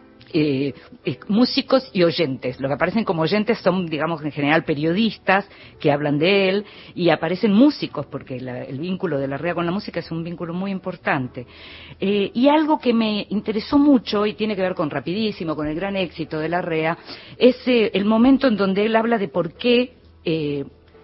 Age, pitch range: 50-69, 145-215 Hz